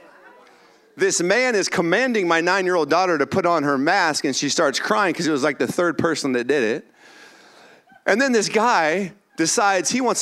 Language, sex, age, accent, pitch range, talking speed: English, male, 40-59, American, 165-230 Hz, 195 wpm